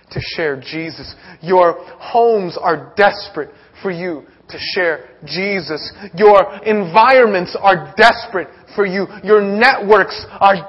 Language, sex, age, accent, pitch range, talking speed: English, male, 30-49, American, 145-195 Hz, 120 wpm